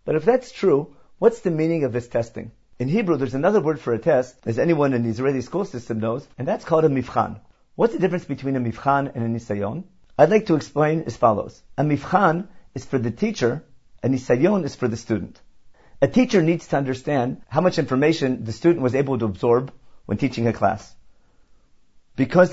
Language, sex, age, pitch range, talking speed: English, male, 50-69, 125-170 Hz, 205 wpm